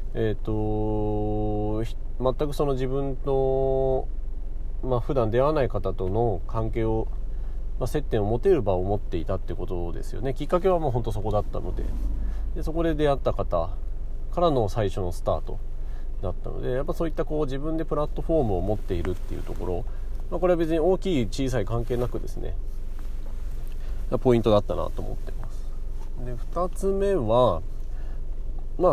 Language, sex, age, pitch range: Japanese, male, 40-59, 95-130 Hz